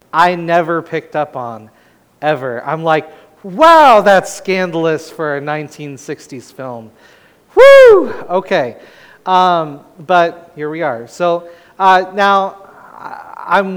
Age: 30-49